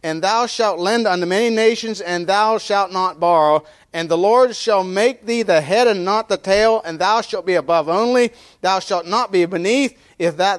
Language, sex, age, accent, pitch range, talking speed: English, male, 40-59, American, 160-220 Hz, 210 wpm